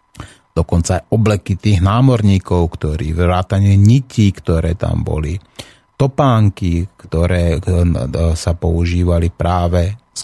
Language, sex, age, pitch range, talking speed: Slovak, male, 30-49, 85-100 Hz, 100 wpm